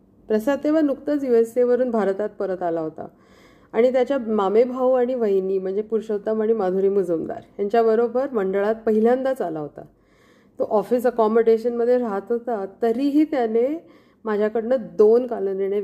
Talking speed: 135 wpm